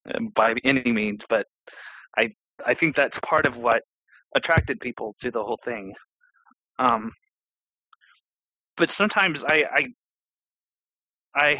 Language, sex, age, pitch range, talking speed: English, male, 30-49, 130-155 Hz, 120 wpm